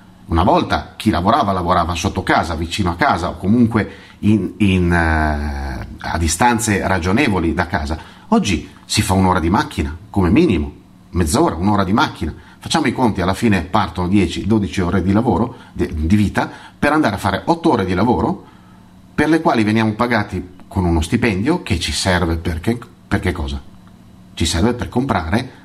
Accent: native